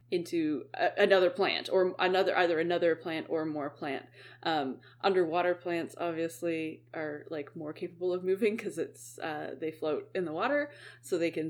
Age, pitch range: 20-39, 150-185 Hz